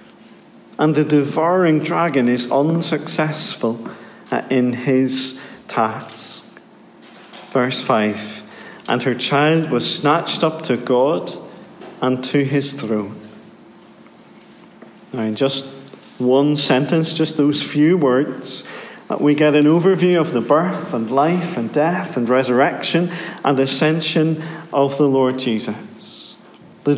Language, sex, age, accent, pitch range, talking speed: English, male, 40-59, British, 120-155 Hz, 115 wpm